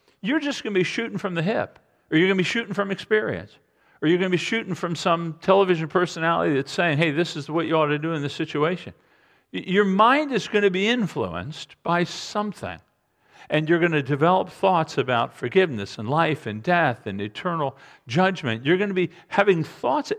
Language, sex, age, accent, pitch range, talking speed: English, male, 50-69, American, 130-190 Hz, 210 wpm